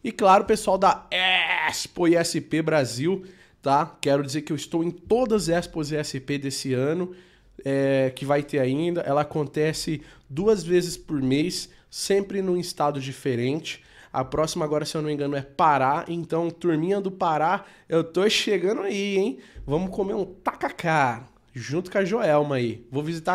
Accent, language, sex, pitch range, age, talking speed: Brazilian, Portuguese, male, 150-195 Hz, 20-39, 170 wpm